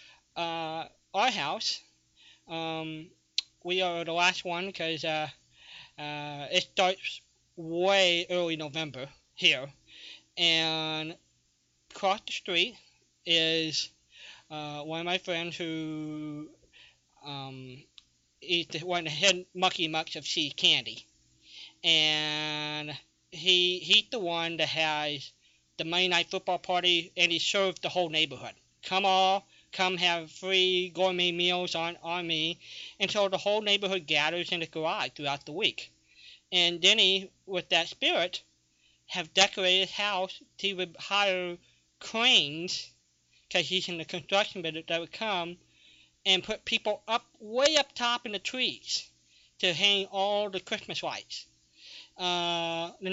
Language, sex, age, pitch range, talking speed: English, male, 20-39, 155-190 Hz, 135 wpm